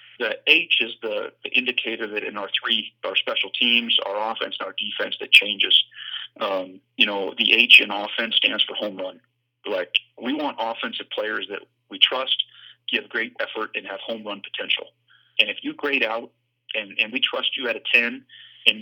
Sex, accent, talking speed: male, American, 195 wpm